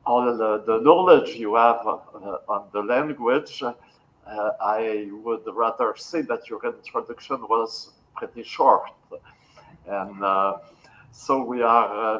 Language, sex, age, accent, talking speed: French, male, 60-79, French, 125 wpm